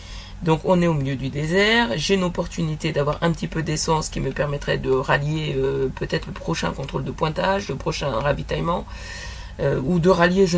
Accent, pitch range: French, 135-185 Hz